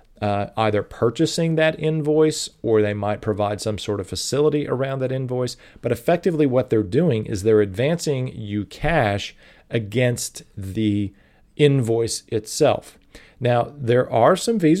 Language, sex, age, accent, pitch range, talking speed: English, male, 40-59, American, 105-145 Hz, 140 wpm